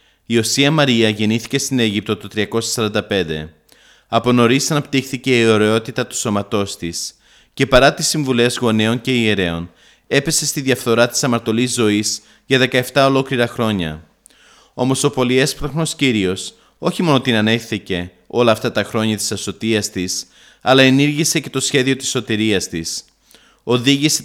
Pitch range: 105-130 Hz